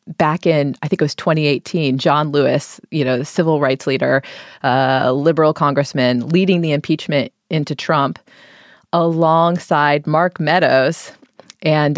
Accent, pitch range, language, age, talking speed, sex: American, 145-185 Hz, English, 30-49, 140 wpm, female